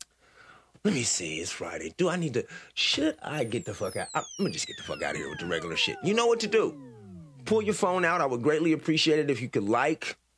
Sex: male